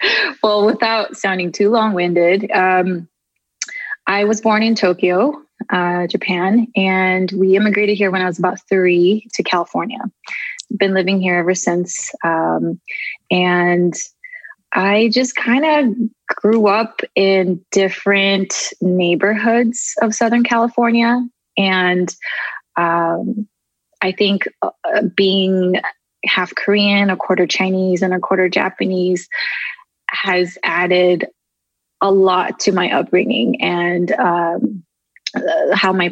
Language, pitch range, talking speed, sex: English, 180-220 Hz, 110 wpm, female